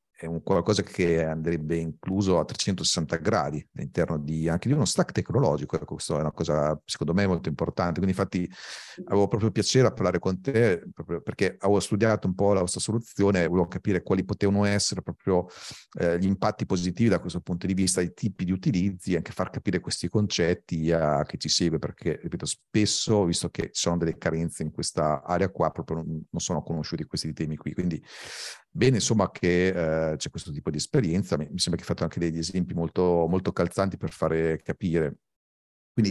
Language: Italian